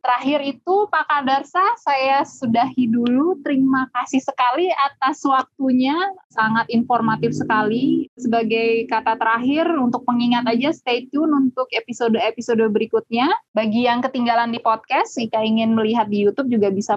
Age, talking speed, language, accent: 20-39, 135 wpm, Indonesian, native